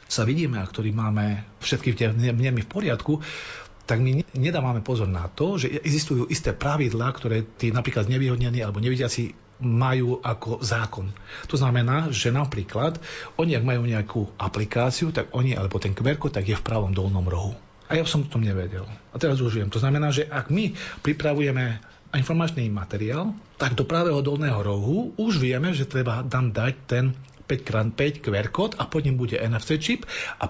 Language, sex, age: Slovak, male, 40-59